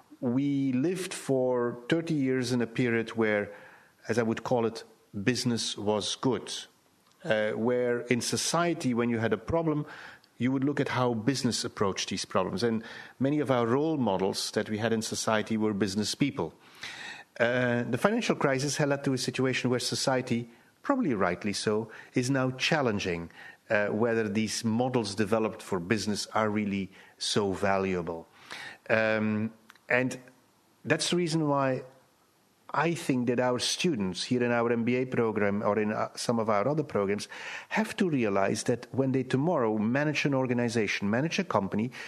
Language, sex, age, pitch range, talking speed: English, male, 50-69, 110-130 Hz, 160 wpm